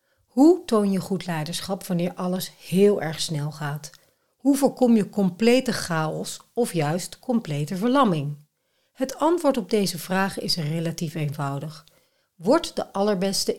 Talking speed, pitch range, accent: 135 wpm, 155-215 Hz, Dutch